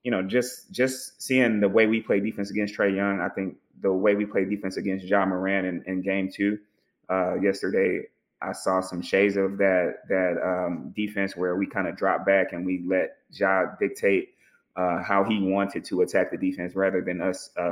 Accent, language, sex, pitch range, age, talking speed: American, English, male, 90-100 Hz, 20-39, 205 wpm